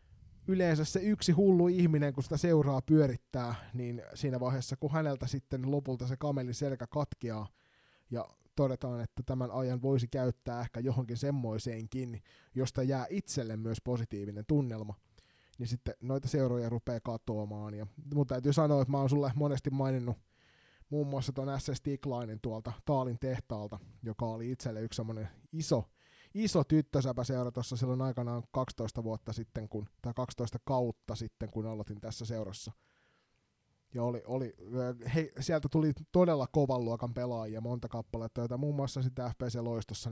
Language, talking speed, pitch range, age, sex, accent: Finnish, 145 wpm, 115-140 Hz, 20-39, male, native